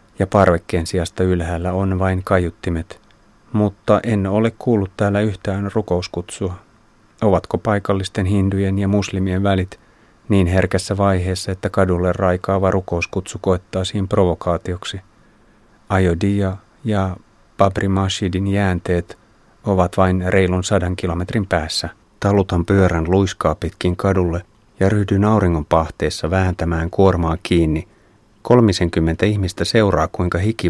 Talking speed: 110 wpm